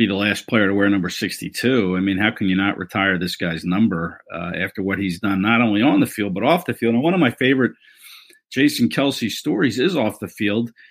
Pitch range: 100-130 Hz